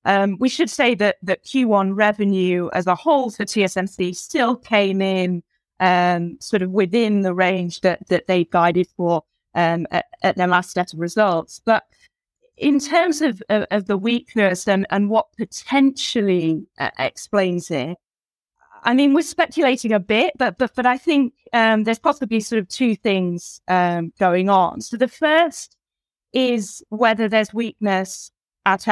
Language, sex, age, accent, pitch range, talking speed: English, female, 20-39, British, 185-235 Hz, 170 wpm